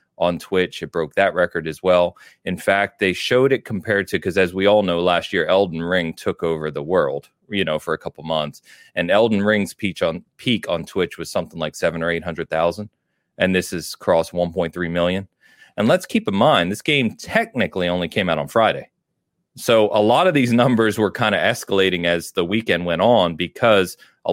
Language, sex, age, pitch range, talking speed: English, male, 30-49, 85-105 Hz, 210 wpm